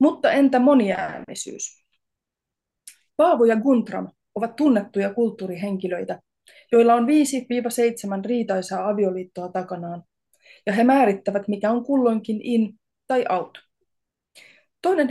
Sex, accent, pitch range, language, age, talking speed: female, native, 205-255 Hz, Finnish, 30-49, 100 wpm